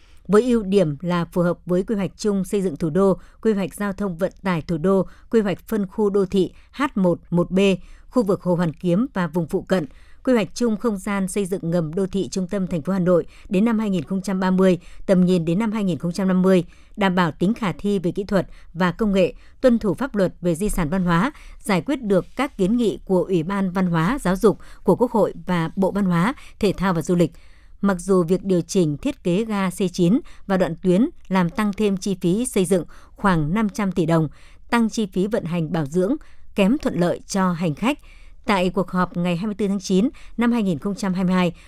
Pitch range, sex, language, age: 180-210 Hz, male, Vietnamese, 60-79